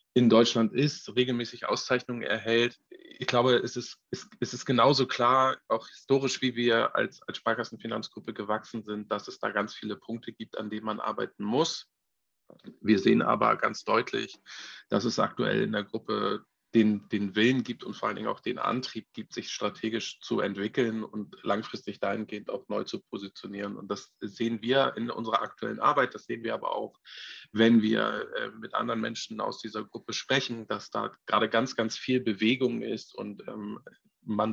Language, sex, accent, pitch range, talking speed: German, male, German, 105-120 Hz, 175 wpm